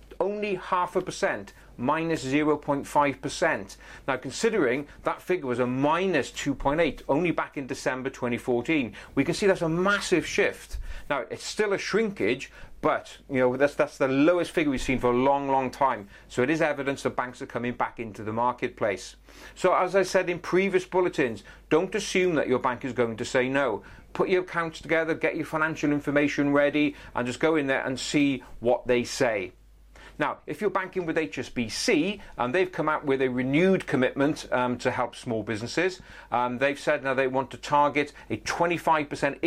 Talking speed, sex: 190 wpm, male